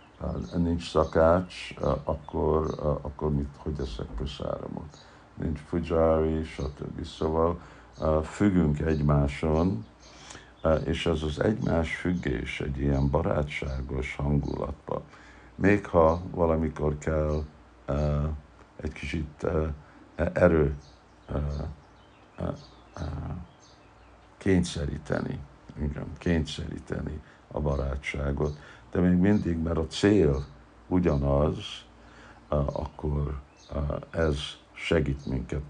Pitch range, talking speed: 70-85 Hz, 75 wpm